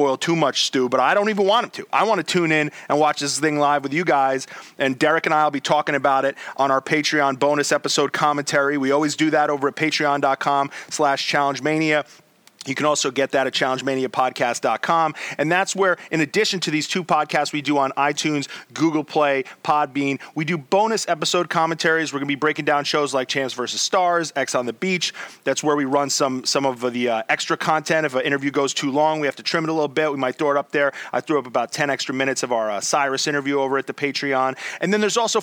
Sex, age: male, 30-49